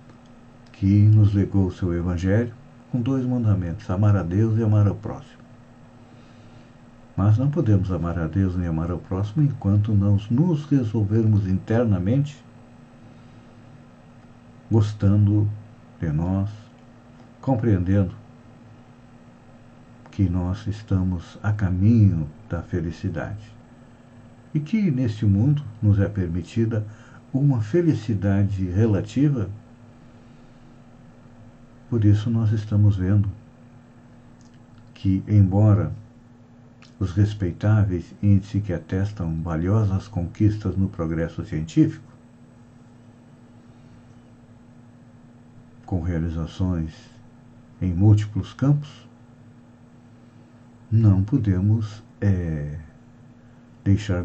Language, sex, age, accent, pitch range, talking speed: Portuguese, male, 60-79, Brazilian, 100-120 Hz, 85 wpm